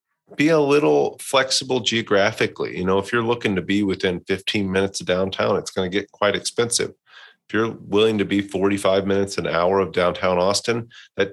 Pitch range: 90-110 Hz